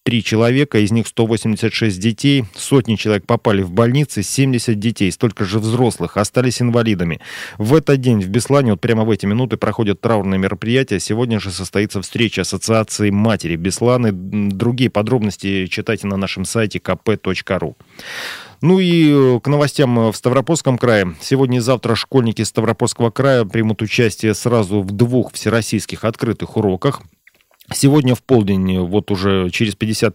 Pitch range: 105-125 Hz